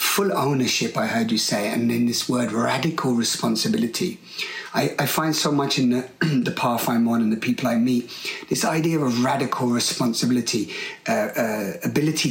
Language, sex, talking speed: English, male, 175 wpm